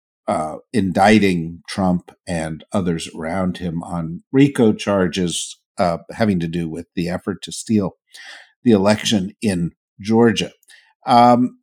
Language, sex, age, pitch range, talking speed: English, male, 50-69, 90-120 Hz, 125 wpm